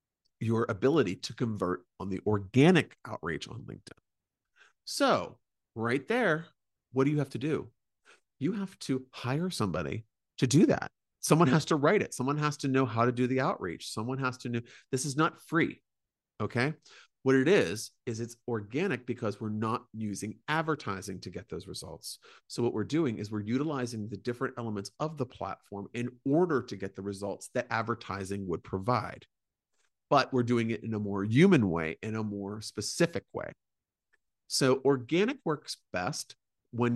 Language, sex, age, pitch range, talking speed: English, male, 40-59, 105-145 Hz, 175 wpm